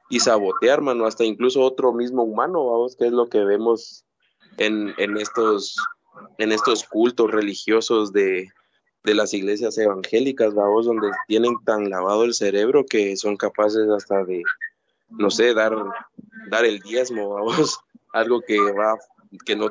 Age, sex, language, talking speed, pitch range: 20-39, male, Spanish, 150 wpm, 105-125 Hz